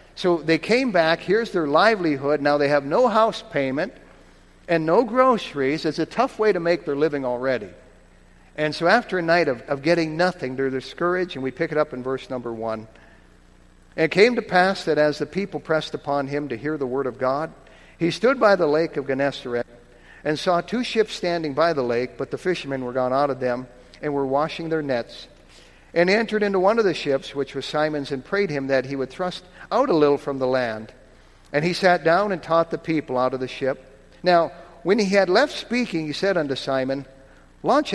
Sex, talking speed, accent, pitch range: male, 215 wpm, American, 135-175 Hz